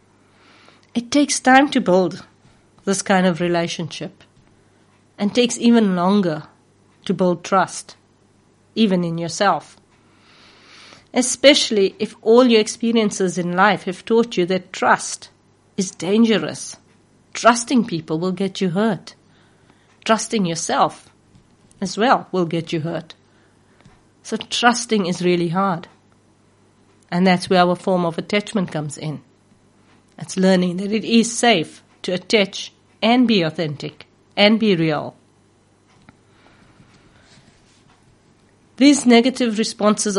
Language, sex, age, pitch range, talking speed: English, female, 50-69, 155-215 Hz, 115 wpm